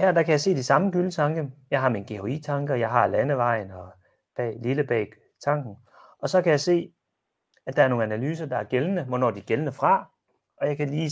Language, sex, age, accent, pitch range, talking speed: Danish, male, 30-49, native, 110-145 Hz, 225 wpm